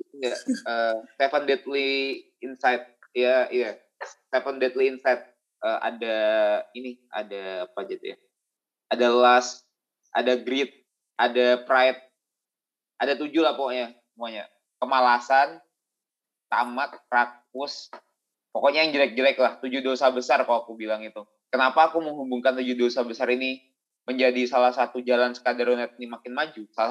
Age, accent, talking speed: 20-39, native, 140 wpm